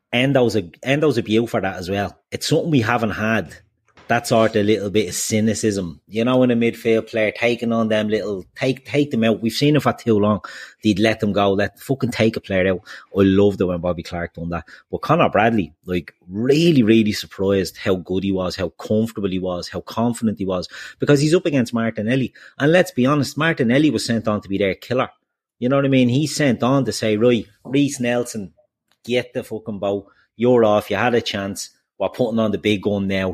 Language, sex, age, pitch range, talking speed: English, male, 30-49, 100-125 Hz, 225 wpm